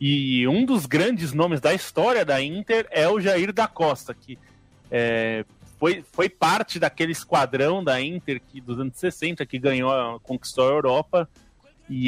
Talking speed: 155 wpm